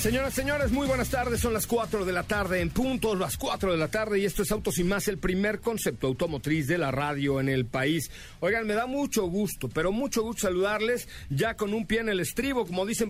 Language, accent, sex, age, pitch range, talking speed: Spanish, Mexican, male, 50-69, 140-210 Hz, 240 wpm